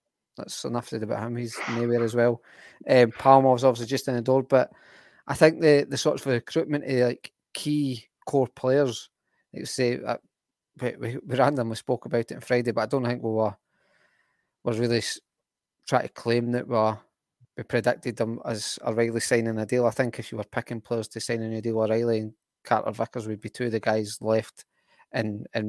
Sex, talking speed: male, 215 wpm